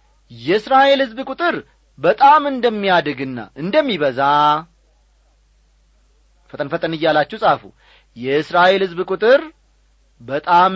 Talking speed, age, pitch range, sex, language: 80 wpm, 40-59, 125-205 Hz, male, Amharic